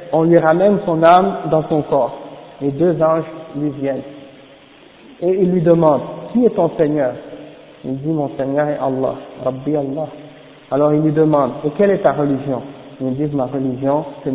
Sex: male